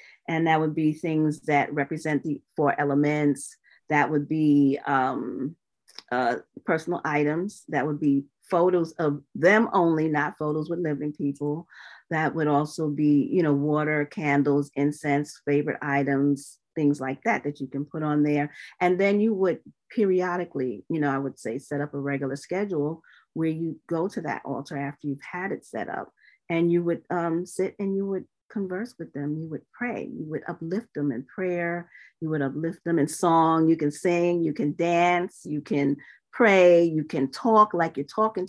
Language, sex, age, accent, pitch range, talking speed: English, female, 40-59, American, 145-175 Hz, 180 wpm